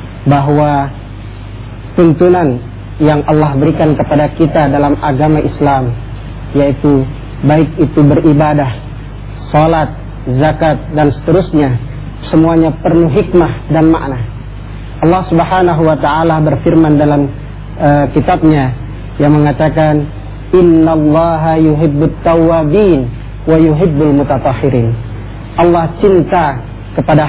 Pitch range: 130-170 Hz